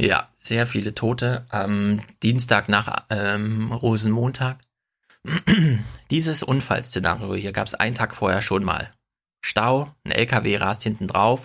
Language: German